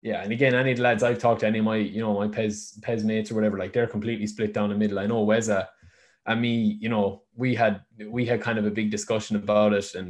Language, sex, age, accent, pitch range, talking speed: English, male, 20-39, Irish, 105-120 Hz, 280 wpm